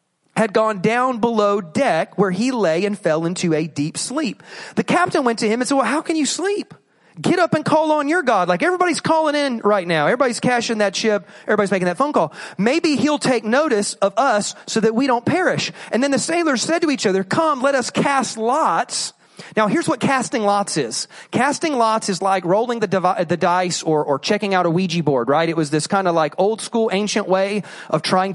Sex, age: male, 30-49